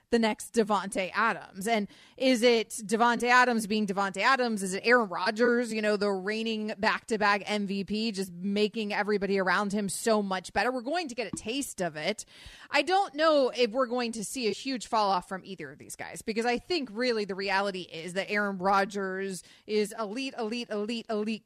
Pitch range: 195-235 Hz